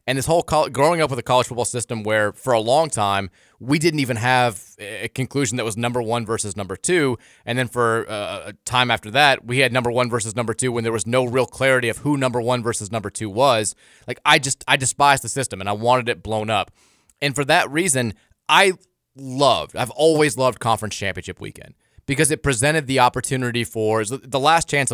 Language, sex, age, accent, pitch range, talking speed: English, male, 20-39, American, 110-140 Hz, 220 wpm